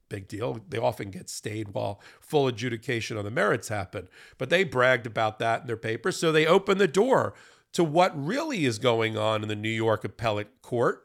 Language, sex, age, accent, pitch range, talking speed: English, male, 40-59, American, 115-165 Hz, 205 wpm